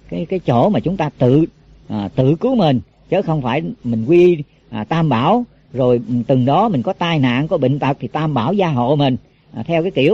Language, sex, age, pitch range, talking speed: Vietnamese, female, 40-59, 130-195 Hz, 230 wpm